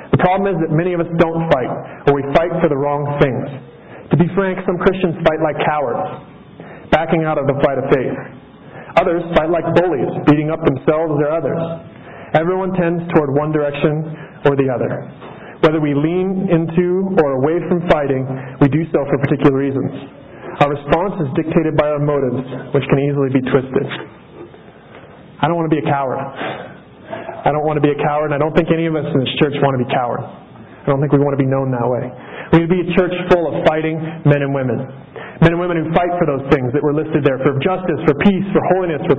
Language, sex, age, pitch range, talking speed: English, male, 30-49, 145-170 Hz, 220 wpm